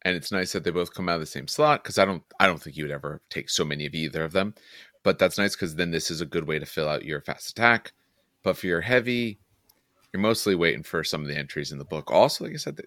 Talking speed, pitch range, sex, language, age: 300 wpm, 75-100 Hz, male, English, 30-49